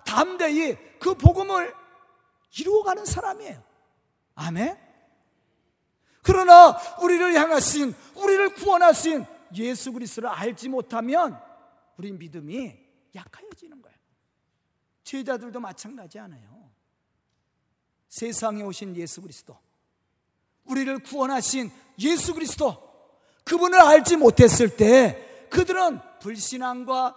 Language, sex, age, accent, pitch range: Korean, male, 40-59, native, 225-345 Hz